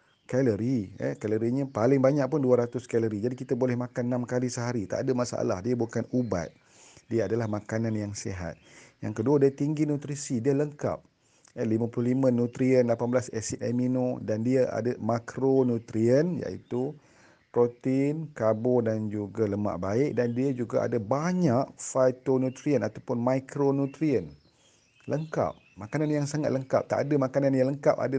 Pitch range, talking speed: 115-140 Hz, 150 wpm